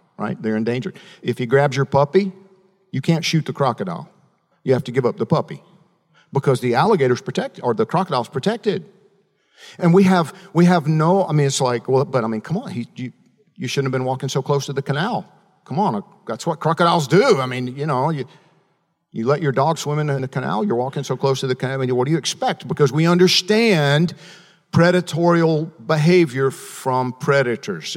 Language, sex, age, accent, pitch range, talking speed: English, male, 50-69, American, 135-190 Hz, 205 wpm